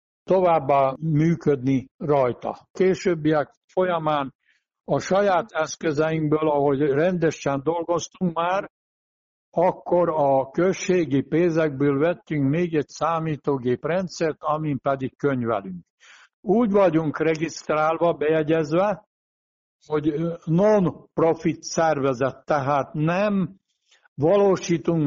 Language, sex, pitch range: Hungarian, male, 145-180 Hz